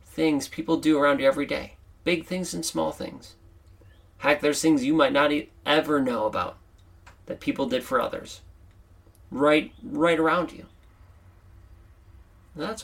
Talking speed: 145 wpm